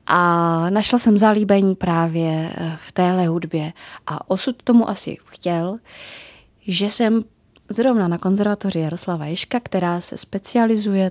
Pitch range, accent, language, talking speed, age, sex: 165-205 Hz, native, Czech, 125 wpm, 20-39, female